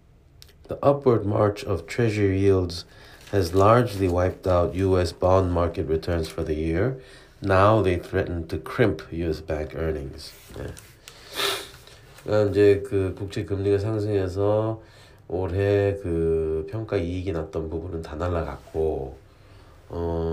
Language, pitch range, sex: Korean, 85-110 Hz, male